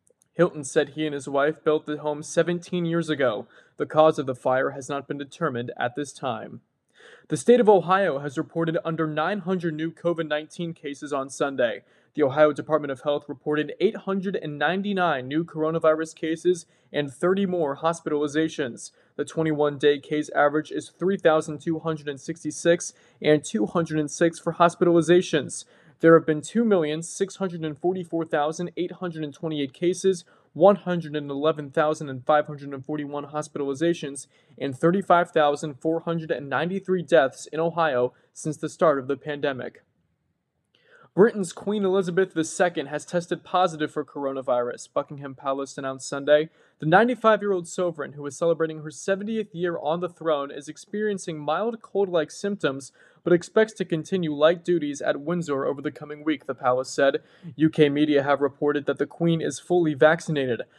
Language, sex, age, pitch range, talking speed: English, male, 20-39, 145-170 Hz, 130 wpm